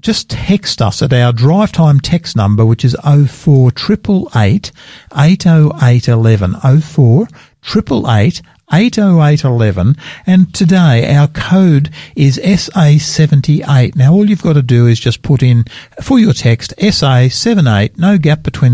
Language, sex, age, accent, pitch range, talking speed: English, male, 60-79, Australian, 120-160 Hz, 140 wpm